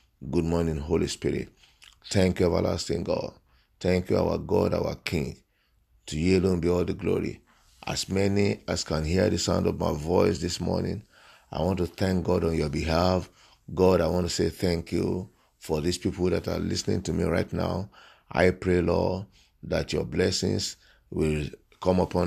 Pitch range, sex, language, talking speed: 80-95 Hz, male, English, 180 wpm